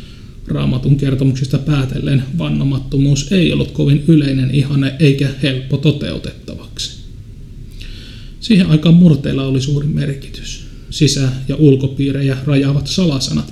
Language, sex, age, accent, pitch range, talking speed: Finnish, male, 30-49, native, 130-150 Hz, 100 wpm